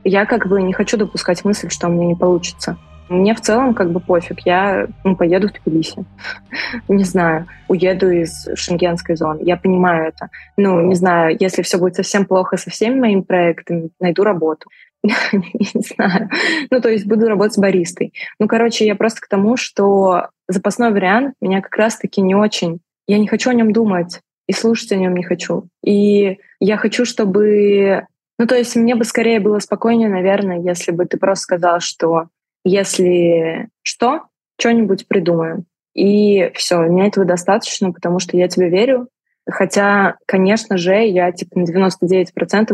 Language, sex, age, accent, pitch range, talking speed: Russian, female, 20-39, native, 180-205 Hz, 170 wpm